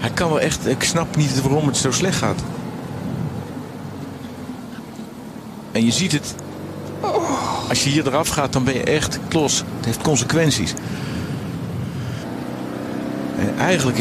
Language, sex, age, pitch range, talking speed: Dutch, male, 50-69, 110-145 Hz, 130 wpm